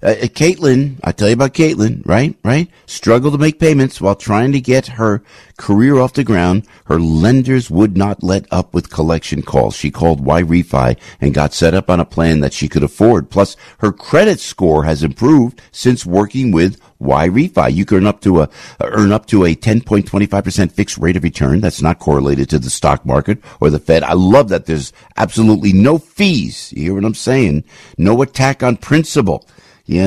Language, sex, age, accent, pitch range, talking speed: English, male, 60-79, American, 90-135 Hz, 210 wpm